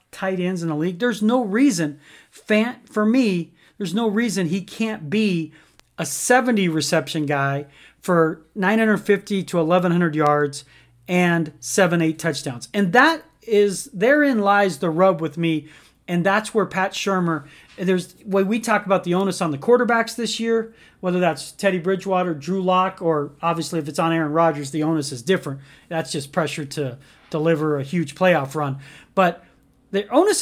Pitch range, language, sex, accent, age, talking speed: 165-210 Hz, English, male, American, 40-59, 165 wpm